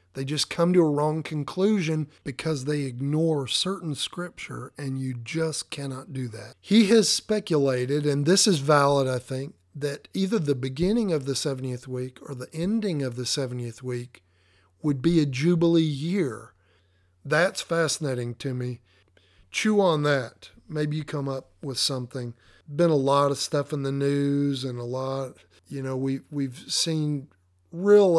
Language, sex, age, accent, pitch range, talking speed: English, male, 50-69, American, 125-150 Hz, 165 wpm